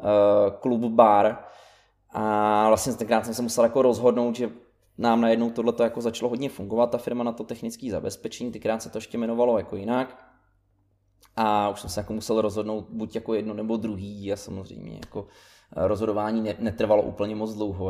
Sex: male